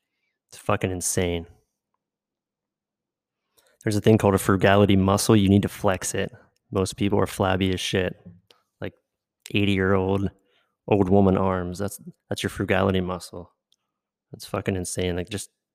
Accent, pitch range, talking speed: American, 95-105 Hz, 135 wpm